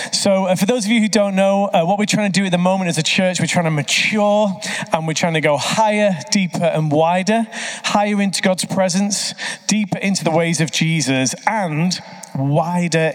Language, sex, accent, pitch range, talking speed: English, male, British, 160-210 Hz, 210 wpm